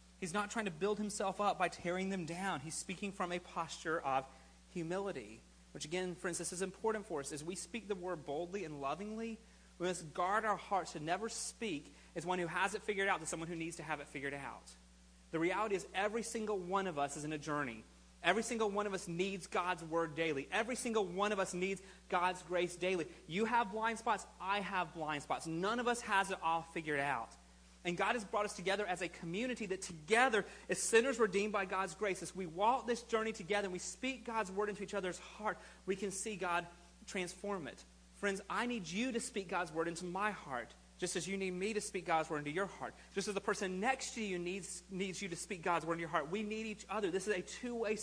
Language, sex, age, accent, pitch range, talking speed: English, male, 30-49, American, 165-205 Hz, 235 wpm